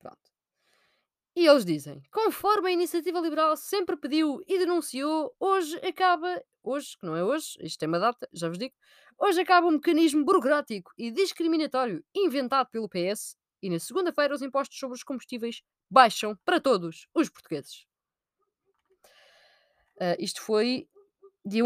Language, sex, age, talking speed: Portuguese, female, 20-39, 140 wpm